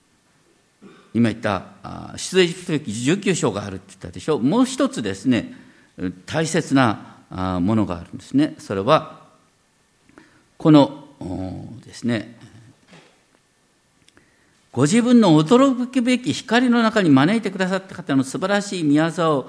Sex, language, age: male, Japanese, 50-69